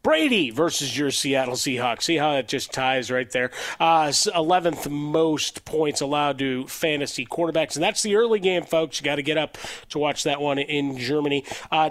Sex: male